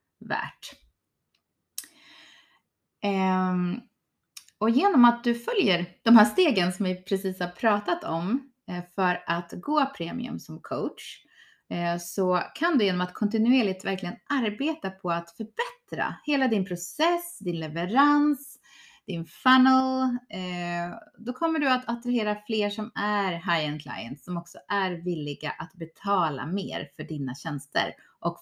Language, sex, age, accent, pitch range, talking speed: Swedish, female, 30-49, native, 175-255 Hz, 125 wpm